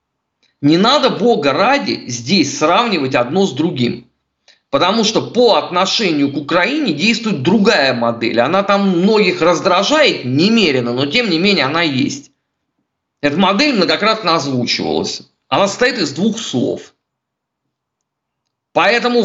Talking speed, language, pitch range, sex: 120 wpm, Russian, 160-235 Hz, male